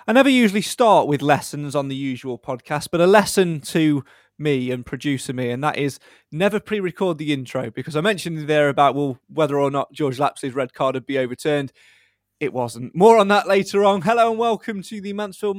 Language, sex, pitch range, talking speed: English, male, 140-195 Hz, 210 wpm